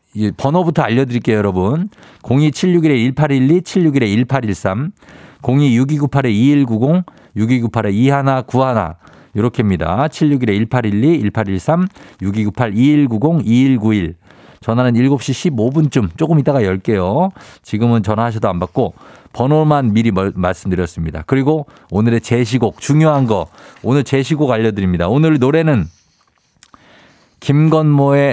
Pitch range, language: 105-145 Hz, Korean